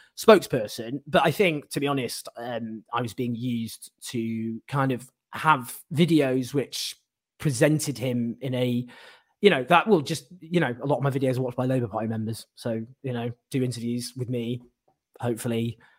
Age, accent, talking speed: 20-39, British, 180 wpm